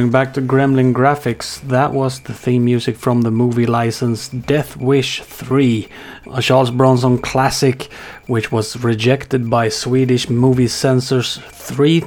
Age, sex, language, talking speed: 30-49, male, Swedish, 145 wpm